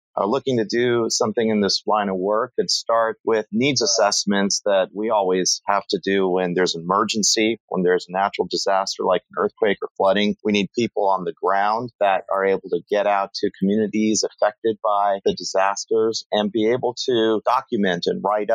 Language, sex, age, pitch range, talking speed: English, male, 40-59, 95-120 Hz, 195 wpm